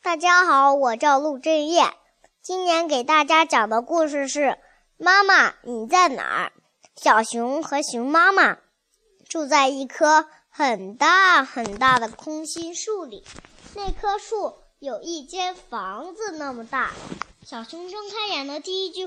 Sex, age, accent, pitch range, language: male, 20-39, native, 250-365 Hz, Chinese